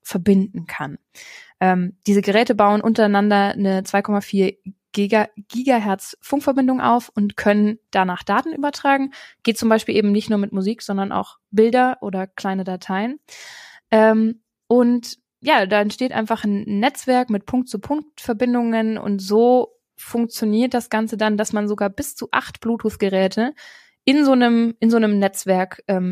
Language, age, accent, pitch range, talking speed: German, 20-39, German, 195-230 Hz, 140 wpm